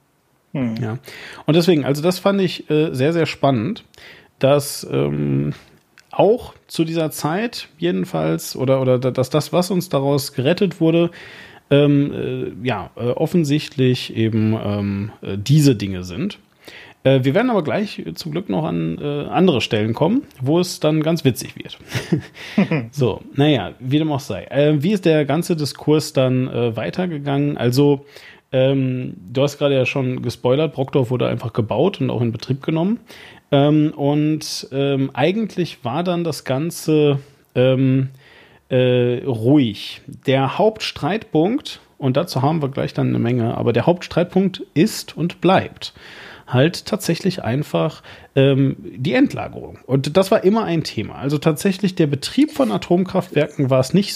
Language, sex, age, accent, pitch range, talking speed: German, male, 40-59, German, 130-165 Hz, 150 wpm